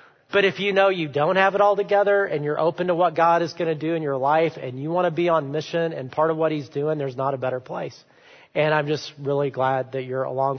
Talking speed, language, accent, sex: 280 wpm, English, American, male